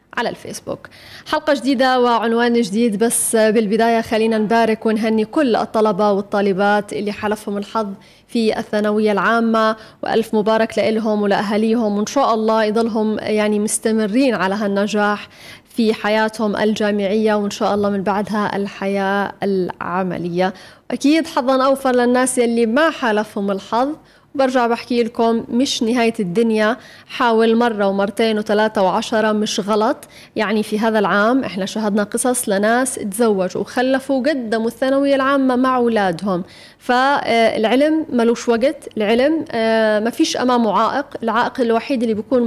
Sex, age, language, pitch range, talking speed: female, 20-39, Arabic, 210-245 Hz, 125 wpm